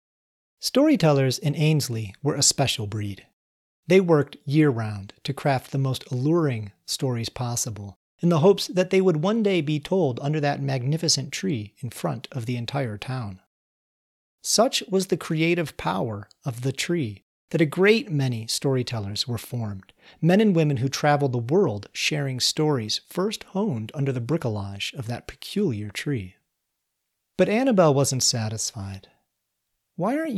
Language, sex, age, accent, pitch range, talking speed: English, male, 40-59, American, 115-185 Hz, 150 wpm